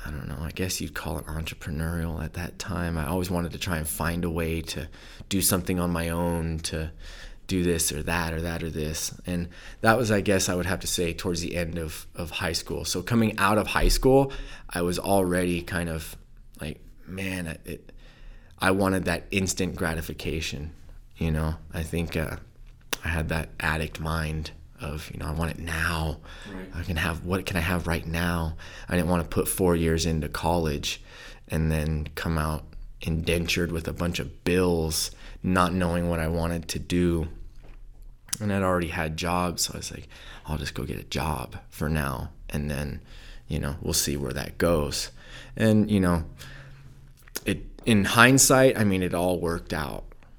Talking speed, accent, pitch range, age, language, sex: 195 wpm, American, 80-90 Hz, 20-39, English, male